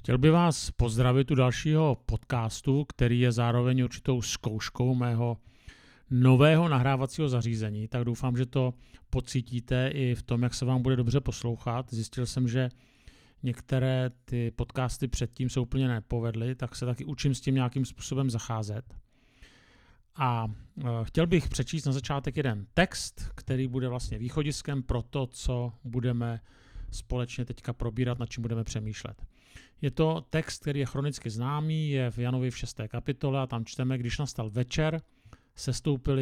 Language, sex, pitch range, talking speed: Czech, male, 120-135 Hz, 150 wpm